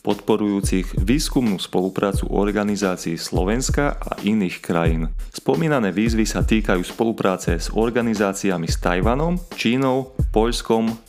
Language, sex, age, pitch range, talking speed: Slovak, male, 30-49, 95-115 Hz, 105 wpm